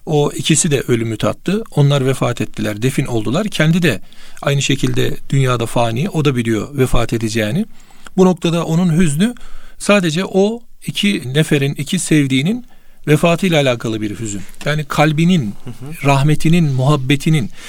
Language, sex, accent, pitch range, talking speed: Turkish, male, native, 130-165 Hz, 130 wpm